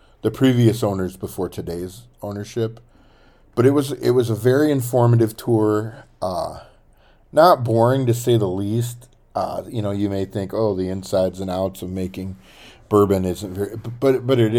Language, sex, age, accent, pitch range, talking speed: English, male, 40-59, American, 95-115 Hz, 170 wpm